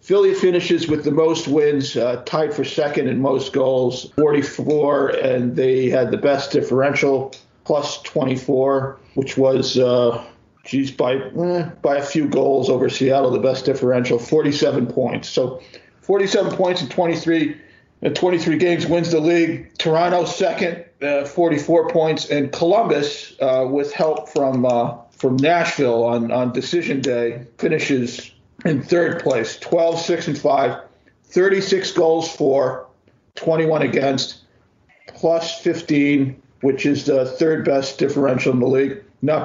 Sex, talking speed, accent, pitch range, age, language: male, 135 wpm, American, 130-160 Hz, 50-69, English